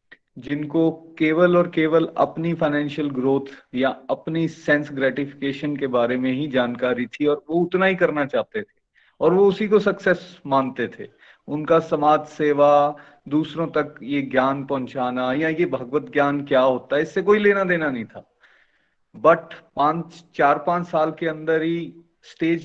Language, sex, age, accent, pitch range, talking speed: Hindi, male, 30-49, native, 135-160 Hz, 160 wpm